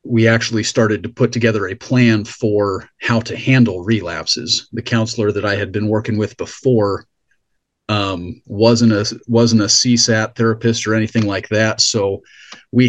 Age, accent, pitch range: 40-59, American, 105-115 Hz